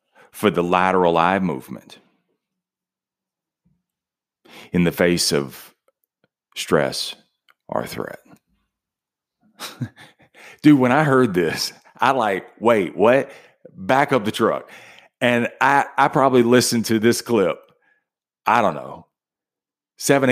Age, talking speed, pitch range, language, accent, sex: 40-59, 110 wpm, 95-145 Hz, English, American, male